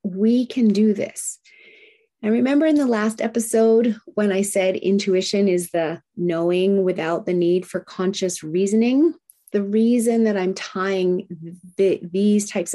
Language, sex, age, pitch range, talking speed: English, female, 30-49, 180-215 Hz, 140 wpm